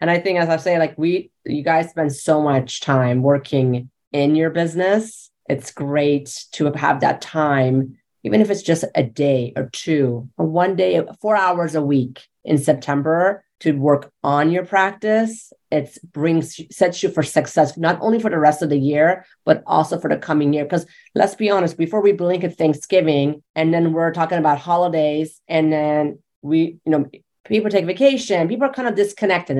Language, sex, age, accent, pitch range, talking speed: English, female, 30-49, American, 150-185 Hz, 190 wpm